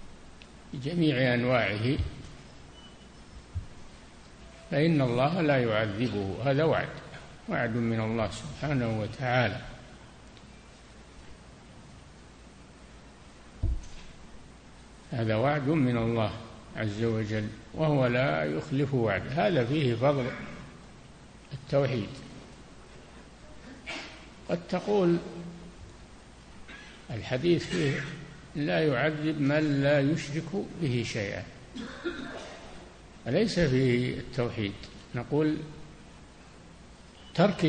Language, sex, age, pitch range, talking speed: Arabic, male, 60-79, 115-150 Hz, 70 wpm